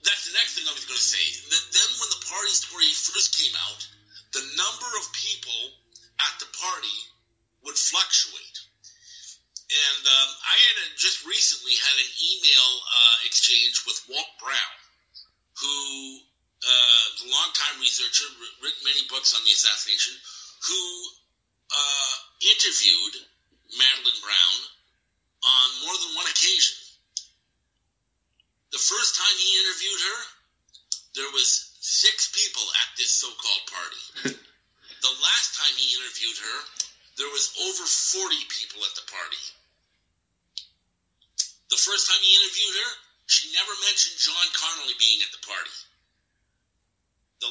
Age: 50-69